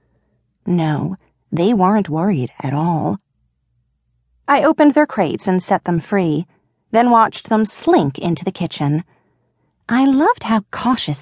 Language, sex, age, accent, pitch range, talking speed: English, female, 40-59, American, 160-245 Hz, 135 wpm